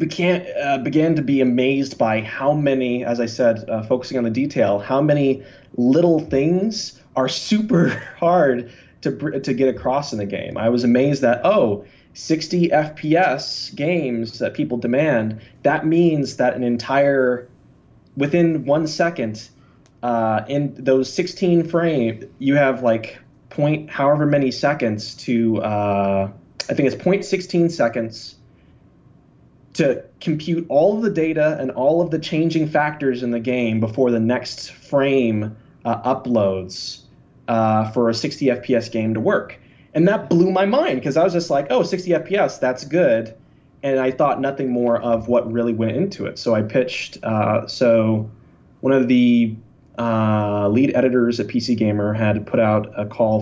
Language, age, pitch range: English, 20-39, 115-150 Hz